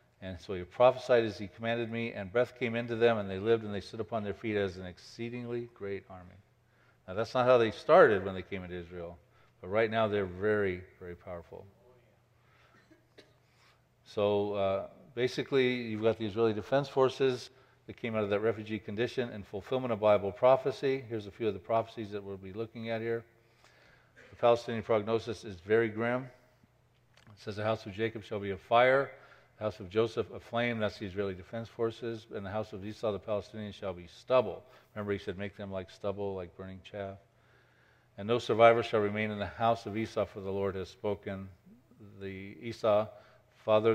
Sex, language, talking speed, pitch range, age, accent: male, English, 195 wpm, 100-115 Hz, 50-69, American